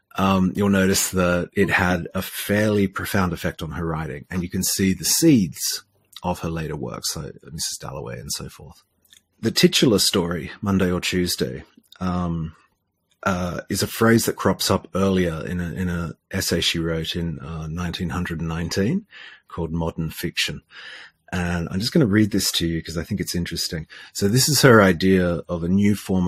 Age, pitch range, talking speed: 30-49, 85-100 Hz, 185 wpm